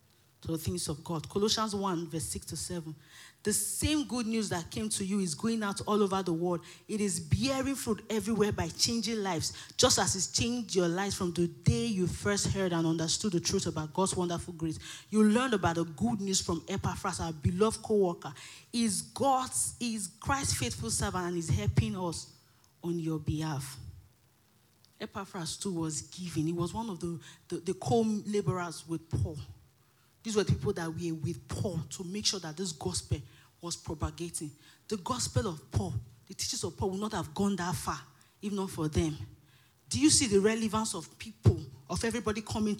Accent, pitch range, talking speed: Nigerian, 155-210 Hz, 190 wpm